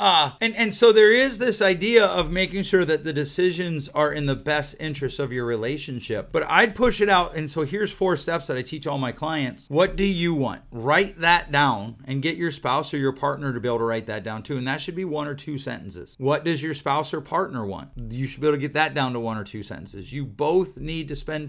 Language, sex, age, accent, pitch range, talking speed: English, male, 30-49, American, 130-180 Hz, 260 wpm